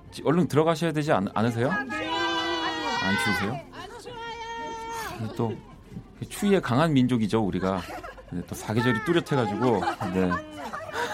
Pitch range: 100-155 Hz